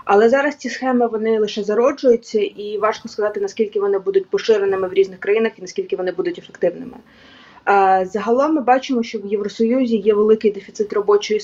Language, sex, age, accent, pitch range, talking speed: Ukrainian, female, 20-39, native, 185-220 Hz, 175 wpm